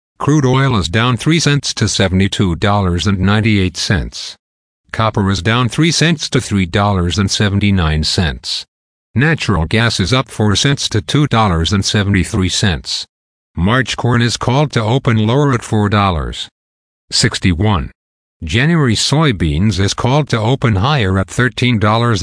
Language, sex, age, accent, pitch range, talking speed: English, male, 50-69, American, 95-125 Hz, 150 wpm